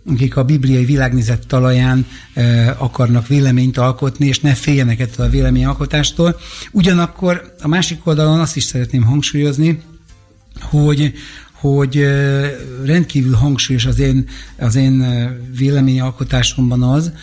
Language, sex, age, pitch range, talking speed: Hungarian, male, 60-79, 125-140 Hz, 120 wpm